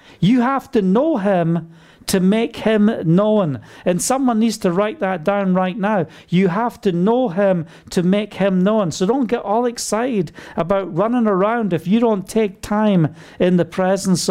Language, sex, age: English, male, 50-69